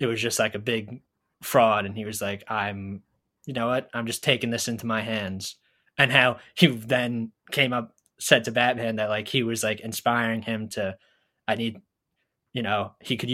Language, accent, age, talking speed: English, American, 20-39, 200 wpm